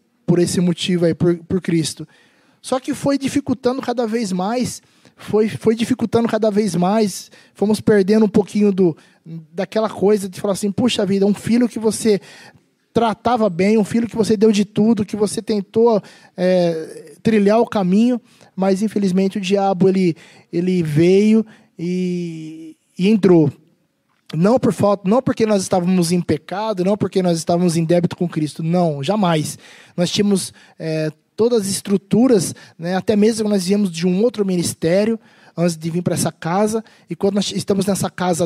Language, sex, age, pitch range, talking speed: Portuguese, male, 20-39, 175-220 Hz, 165 wpm